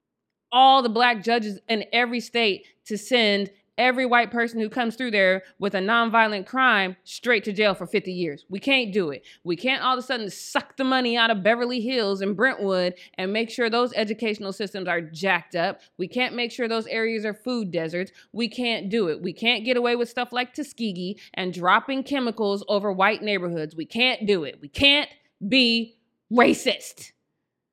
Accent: American